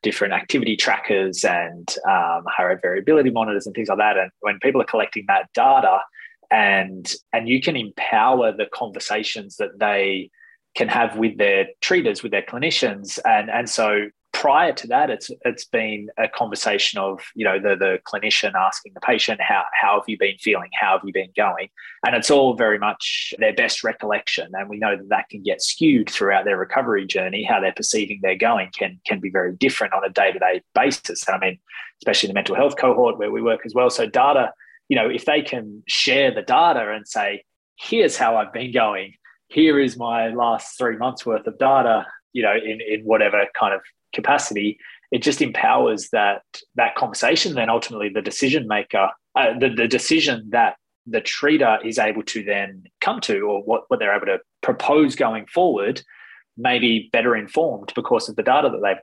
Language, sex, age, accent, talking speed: English, male, 20-39, Australian, 195 wpm